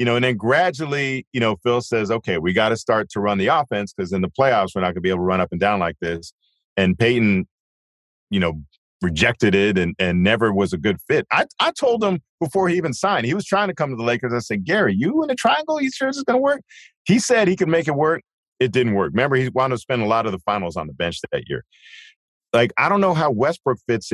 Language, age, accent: English, 40-59, American